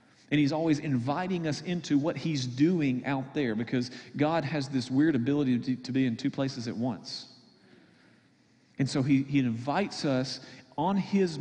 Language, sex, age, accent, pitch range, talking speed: English, male, 40-59, American, 130-155 Hz, 170 wpm